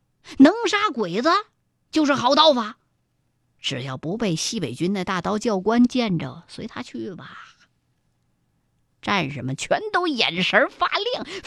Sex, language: female, Chinese